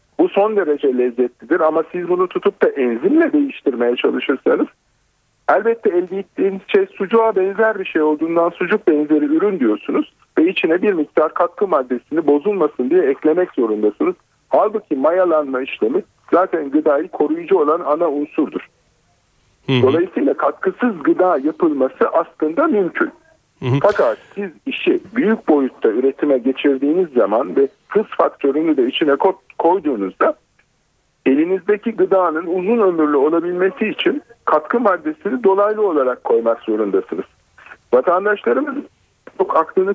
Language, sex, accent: Turkish, male, native